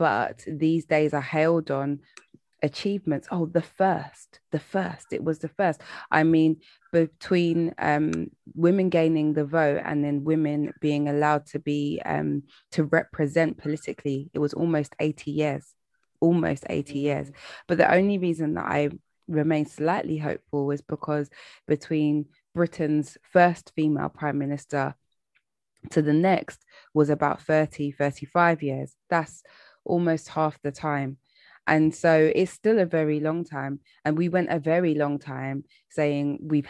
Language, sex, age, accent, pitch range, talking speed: English, female, 20-39, British, 145-170 Hz, 145 wpm